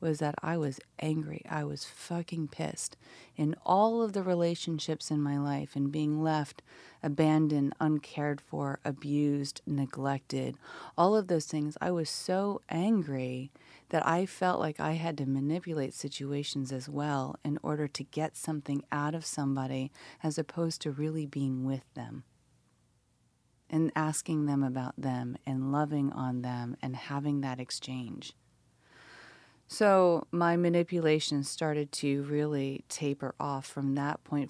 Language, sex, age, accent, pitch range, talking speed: English, female, 30-49, American, 140-155 Hz, 145 wpm